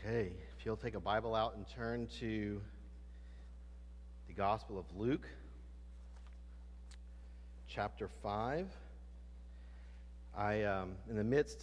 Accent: American